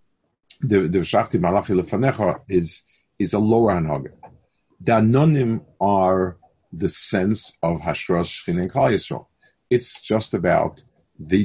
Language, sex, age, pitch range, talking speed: English, male, 50-69, 90-115 Hz, 120 wpm